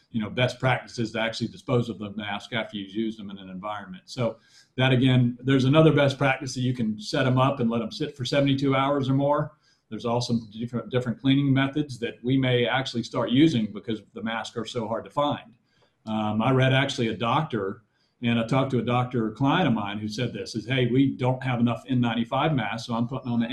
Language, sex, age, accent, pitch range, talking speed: English, male, 40-59, American, 115-130 Hz, 230 wpm